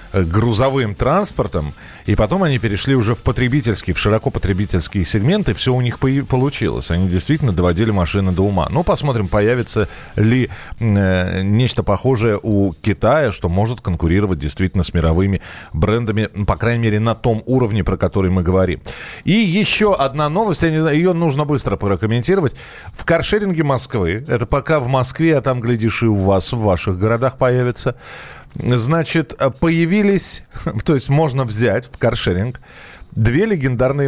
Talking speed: 150 wpm